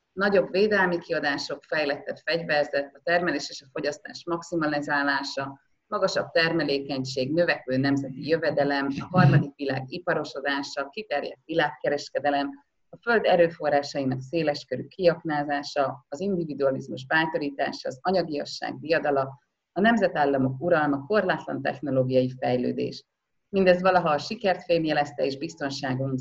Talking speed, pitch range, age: 105 wpm, 140-195 Hz, 30-49